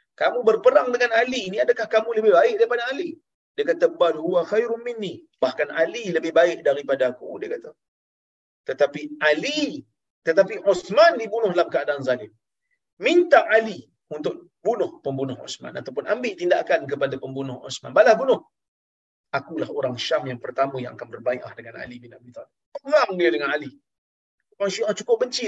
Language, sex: Malayalam, male